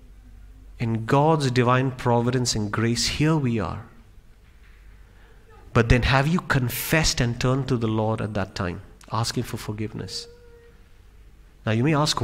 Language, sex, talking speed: English, male, 140 wpm